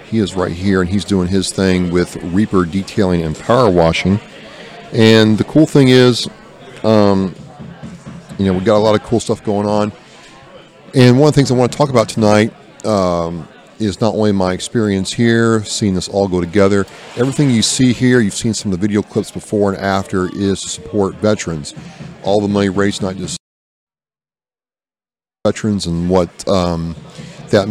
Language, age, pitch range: English, 40-59, 90-110 Hz